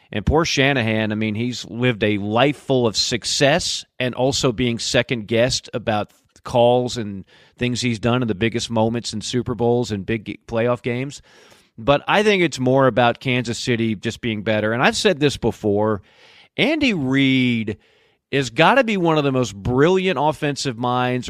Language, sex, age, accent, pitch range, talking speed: English, male, 40-59, American, 120-165 Hz, 175 wpm